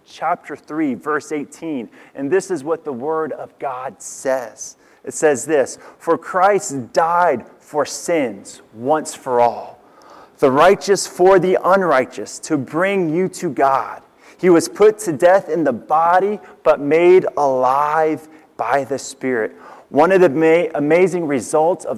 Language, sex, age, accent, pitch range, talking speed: English, male, 30-49, American, 145-185 Hz, 145 wpm